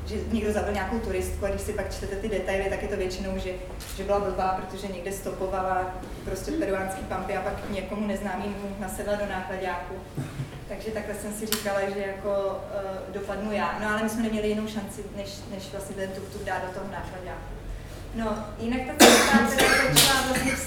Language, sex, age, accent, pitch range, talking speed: Czech, female, 20-39, native, 200-225 Hz, 190 wpm